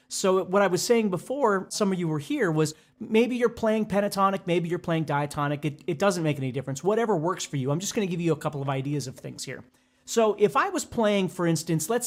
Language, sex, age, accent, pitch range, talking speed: English, male, 30-49, American, 155-220 Hz, 250 wpm